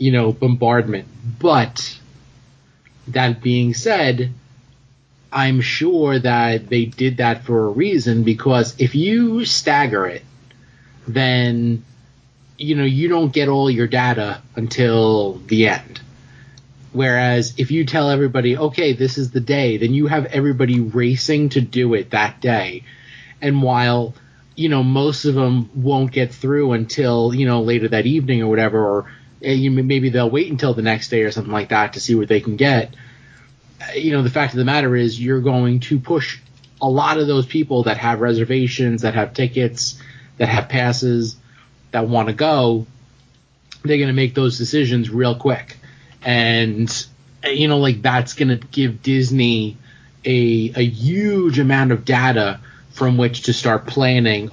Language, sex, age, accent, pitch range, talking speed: English, male, 30-49, American, 120-135 Hz, 160 wpm